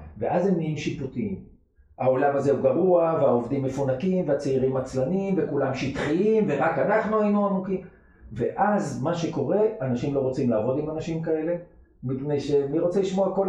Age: 50-69